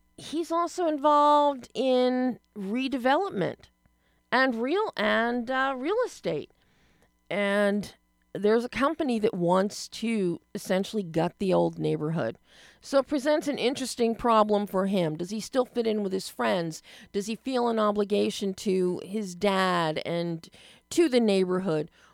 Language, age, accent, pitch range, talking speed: English, 40-59, American, 185-240 Hz, 140 wpm